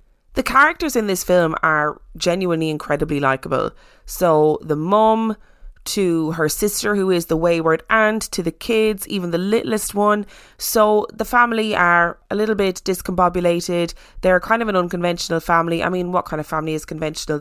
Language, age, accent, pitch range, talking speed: English, 20-39, Irish, 165-205 Hz, 170 wpm